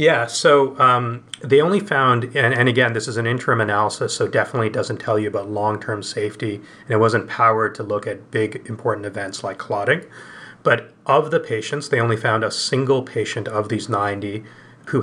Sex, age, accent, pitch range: male, 30-49, American, 105-125 Hz